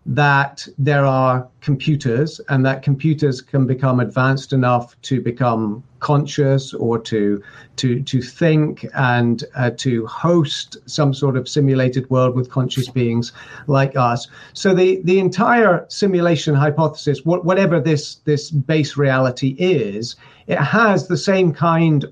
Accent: British